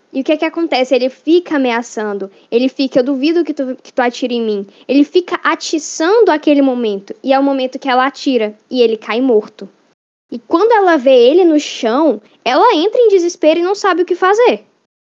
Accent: Brazilian